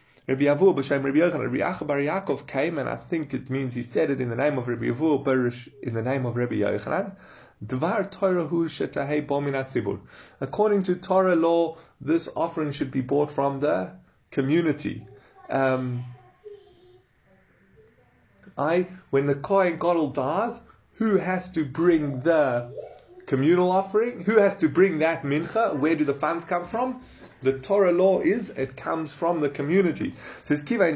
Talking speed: 155 wpm